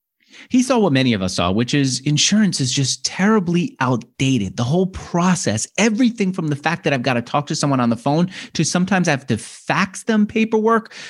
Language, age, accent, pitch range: English, 30-49, American, 135-210 Hz